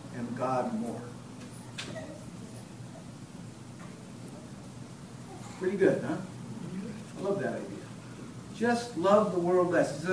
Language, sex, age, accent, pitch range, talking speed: English, male, 60-79, American, 150-200 Hz, 95 wpm